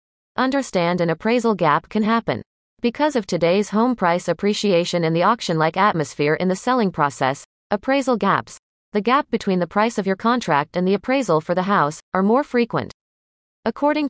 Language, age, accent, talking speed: English, 30-49, American, 170 wpm